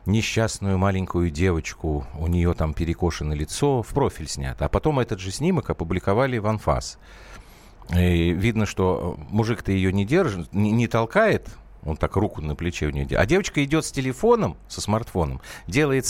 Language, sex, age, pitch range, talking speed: Russian, male, 50-69, 85-120 Hz, 170 wpm